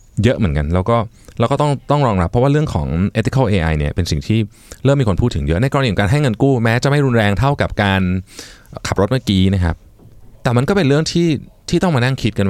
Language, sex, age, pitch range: Thai, male, 20-39, 90-125 Hz